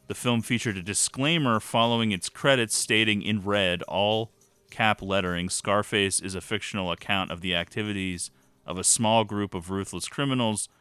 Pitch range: 90-110 Hz